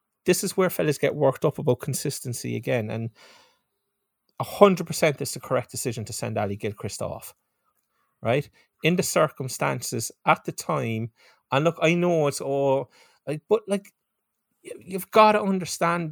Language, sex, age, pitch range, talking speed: English, male, 30-49, 155-195 Hz, 155 wpm